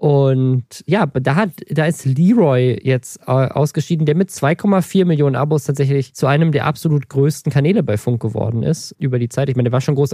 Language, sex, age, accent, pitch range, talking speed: German, male, 20-39, German, 125-150 Hz, 200 wpm